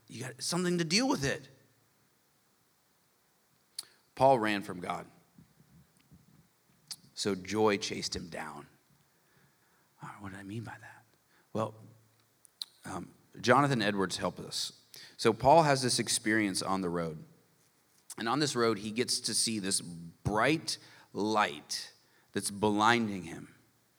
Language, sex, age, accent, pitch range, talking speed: English, male, 30-49, American, 105-125 Hz, 125 wpm